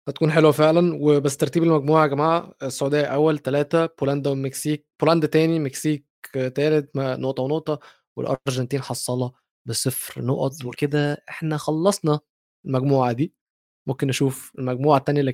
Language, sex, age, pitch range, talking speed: Arabic, male, 20-39, 135-190 Hz, 130 wpm